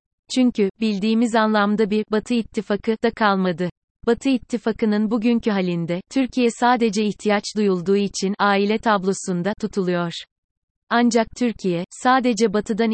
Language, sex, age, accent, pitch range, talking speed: Turkish, female, 30-49, native, 195-230 Hz, 110 wpm